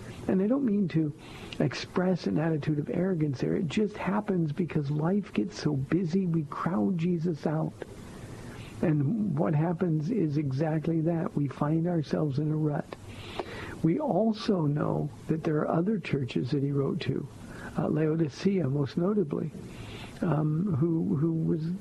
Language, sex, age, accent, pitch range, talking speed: English, male, 60-79, American, 150-180 Hz, 150 wpm